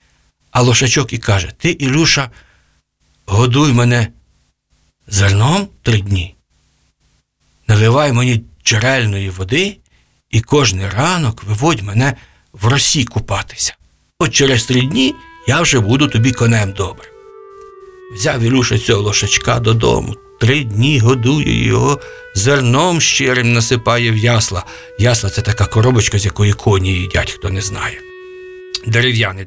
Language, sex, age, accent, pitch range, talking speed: Ukrainian, male, 50-69, native, 110-150 Hz, 120 wpm